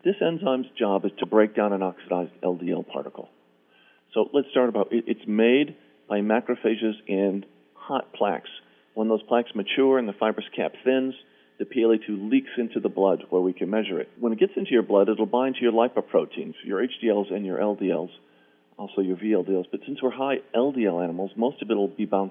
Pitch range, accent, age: 90-120 Hz, American, 50-69